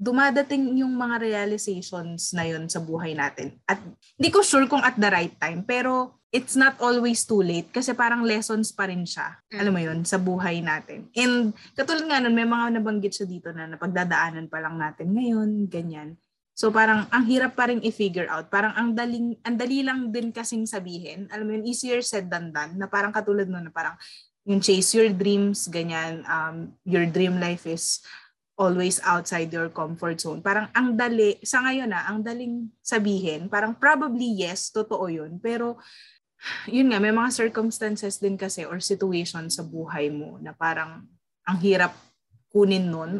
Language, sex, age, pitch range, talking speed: Filipino, female, 20-39, 175-235 Hz, 180 wpm